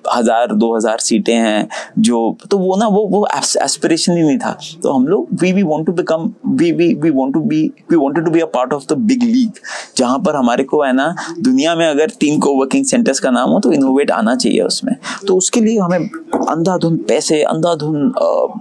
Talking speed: 135 wpm